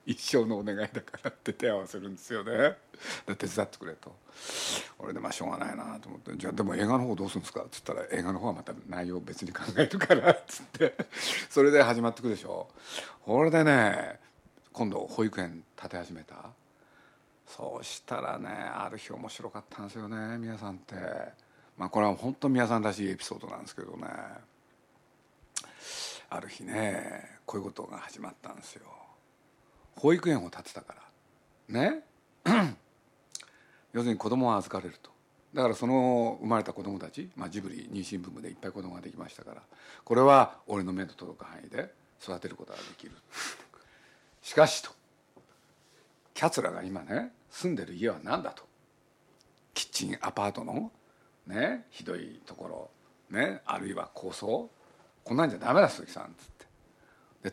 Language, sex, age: Japanese, male, 50-69